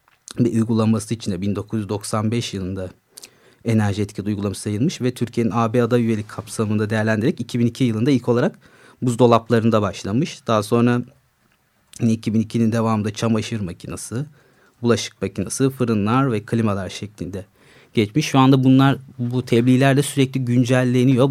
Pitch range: 105-125 Hz